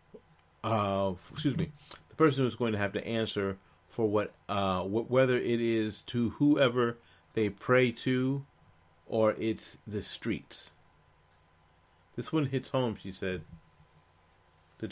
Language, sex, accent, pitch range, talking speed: English, male, American, 90-115 Hz, 135 wpm